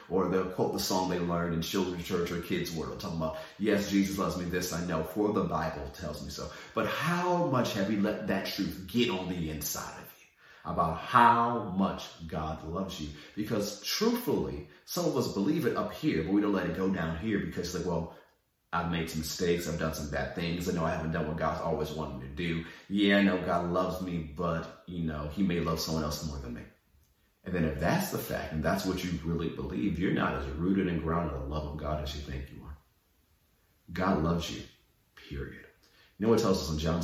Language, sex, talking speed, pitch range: English, male, 235 wpm, 75-95 Hz